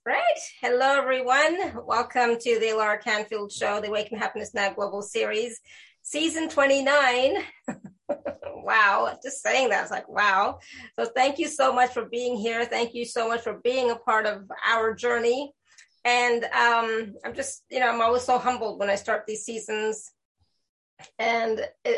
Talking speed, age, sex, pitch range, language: 160 wpm, 30-49, female, 215-250 Hz, English